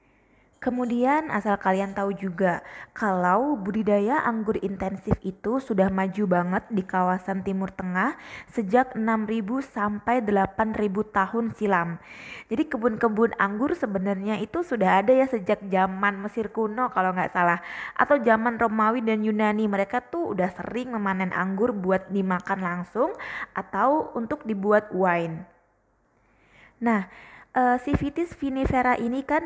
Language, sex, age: Indonesian, female, 20-39